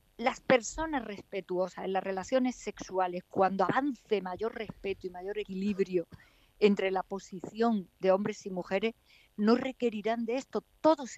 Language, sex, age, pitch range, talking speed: Spanish, female, 50-69, 190-255 Hz, 140 wpm